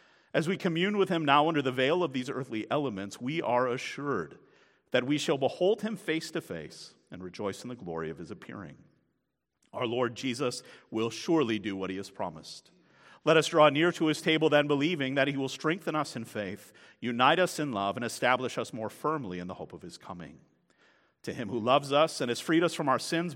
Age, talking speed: 40-59, 220 wpm